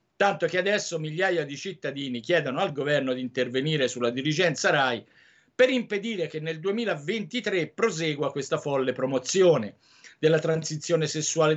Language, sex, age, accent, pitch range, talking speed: Italian, male, 50-69, native, 130-180 Hz, 135 wpm